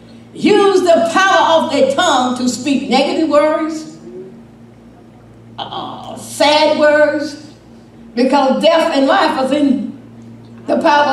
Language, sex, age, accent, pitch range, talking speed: English, female, 60-79, American, 185-270 Hz, 115 wpm